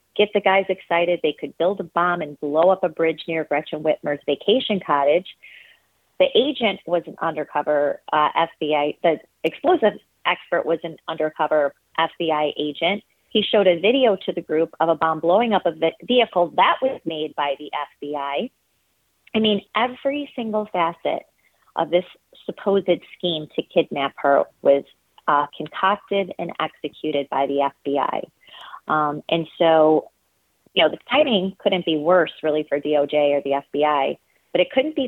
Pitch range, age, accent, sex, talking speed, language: 150-190 Hz, 30-49, American, female, 160 wpm, English